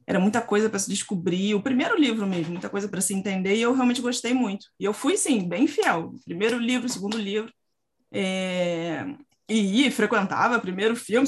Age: 20-39